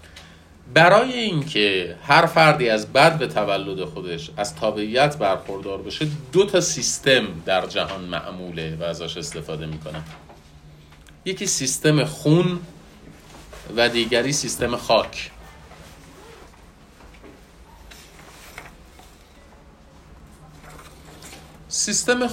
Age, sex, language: 40-59, male, Persian